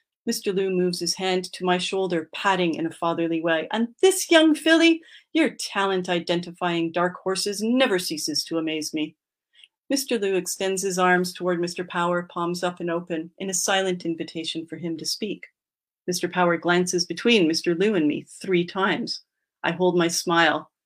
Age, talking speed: 40-59, 175 wpm